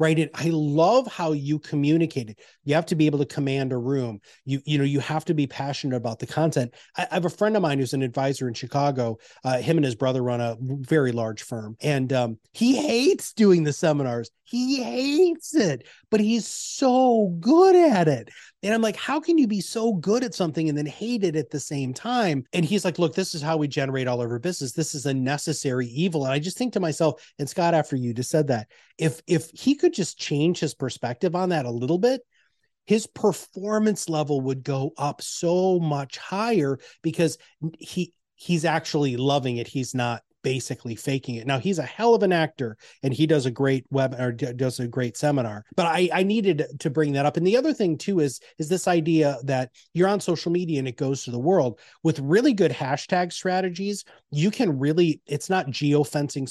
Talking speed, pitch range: 220 wpm, 135-185 Hz